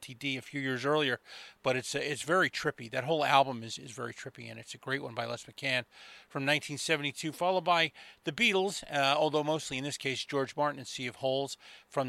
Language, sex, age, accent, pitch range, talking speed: English, male, 30-49, American, 125-155 Hz, 225 wpm